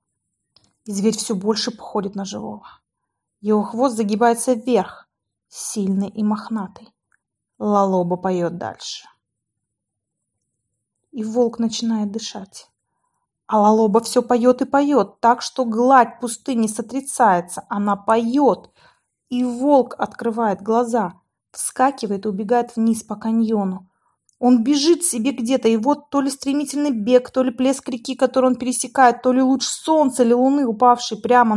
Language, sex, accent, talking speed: Russian, female, native, 130 wpm